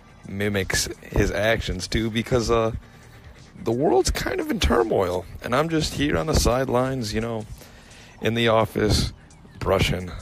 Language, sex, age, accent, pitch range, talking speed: English, male, 40-59, American, 90-110 Hz, 145 wpm